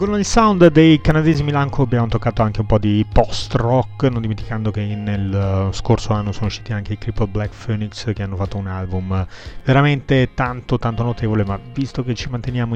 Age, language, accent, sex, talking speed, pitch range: 30-49, Italian, native, male, 195 wpm, 105-130 Hz